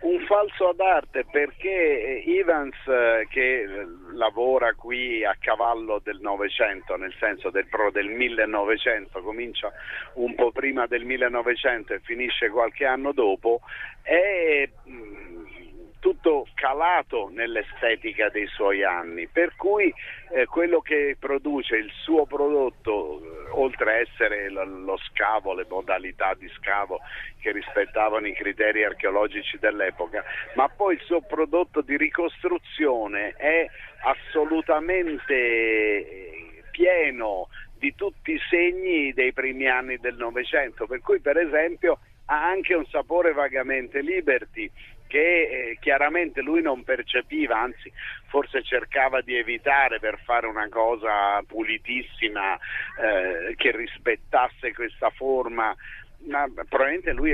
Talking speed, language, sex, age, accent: 120 wpm, Italian, male, 50-69, native